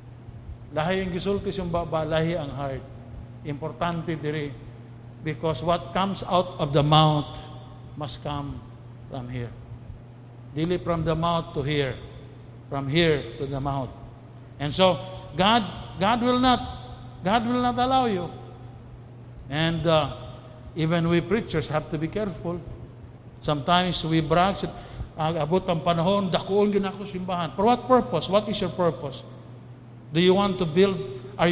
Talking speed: 110 wpm